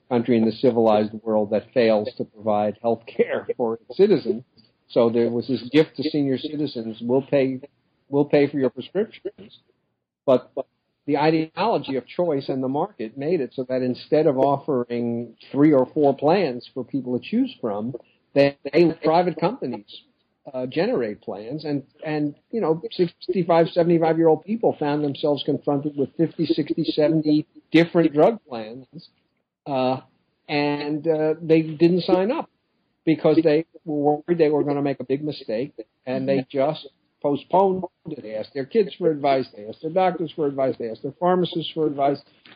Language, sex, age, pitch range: English, male, 50-69, 130-165 Hz